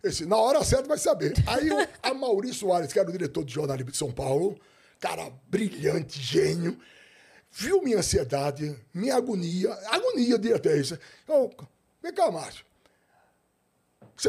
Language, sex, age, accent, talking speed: Portuguese, male, 60-79, Brazilian, 155 wpm